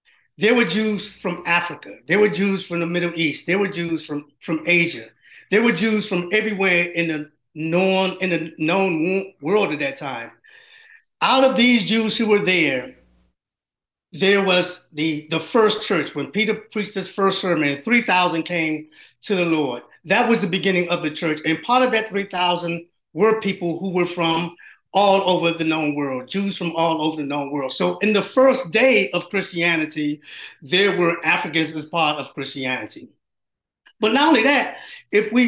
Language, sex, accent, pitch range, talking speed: English, male, American, 165-215 Hz, 180 wpm